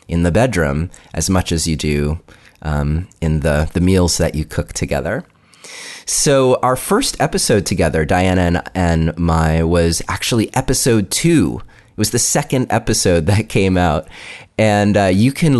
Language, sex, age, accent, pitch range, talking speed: English, male, 30-49, American, 80-105 Hz, 160 wpm